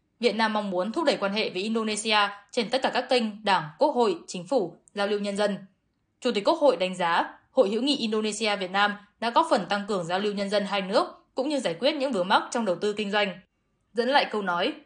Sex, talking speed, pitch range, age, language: female, 255 wpm, 190-245 Hz, 10-29, Vietnamese